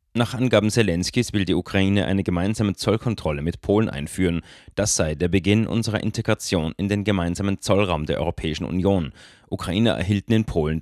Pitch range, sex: 85-110 Hz, male